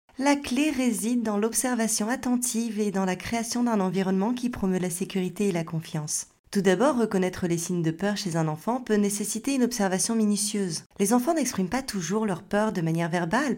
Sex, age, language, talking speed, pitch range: female, 30-49, French, 195 wpm, 175-235 Hz